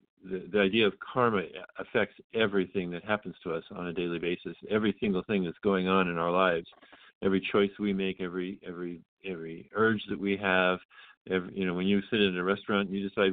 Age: 50-69